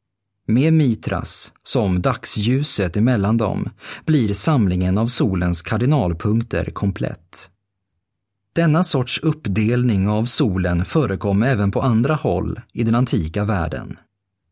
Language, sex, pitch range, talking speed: Swedish, male, 95-130 Hz, 110 wpm